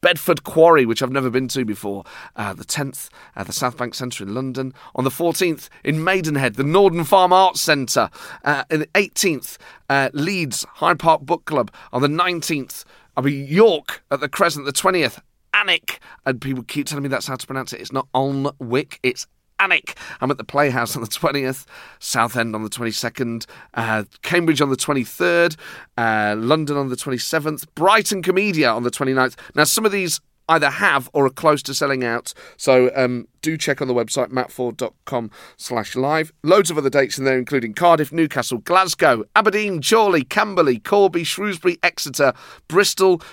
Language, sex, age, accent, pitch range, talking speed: English, male, 30-49, British, 120-165 Hz, 180 wpm